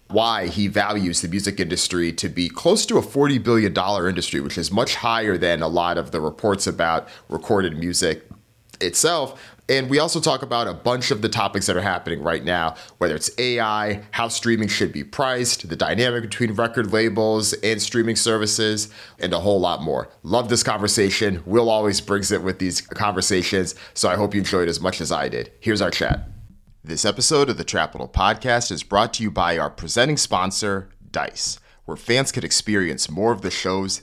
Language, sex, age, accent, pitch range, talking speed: English, male, 30-49, American, 90-115 Hz, 195 wpm